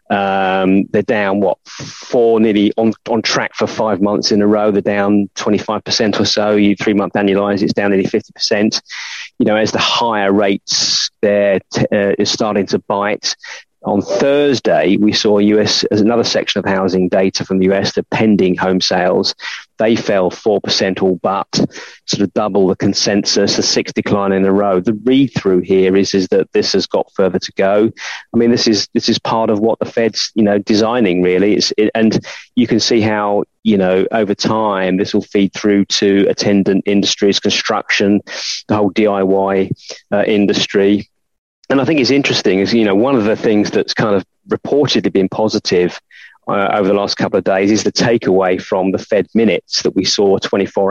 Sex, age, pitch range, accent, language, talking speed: male, 30-49, 95-105 Hz, British, English, 195 wpm